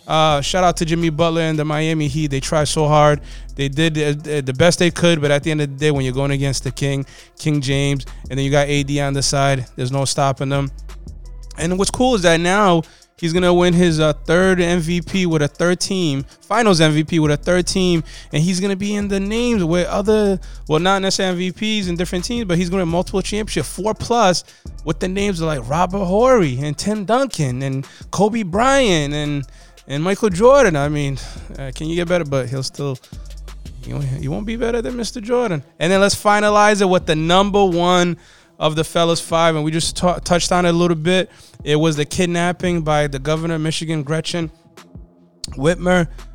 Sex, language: male, English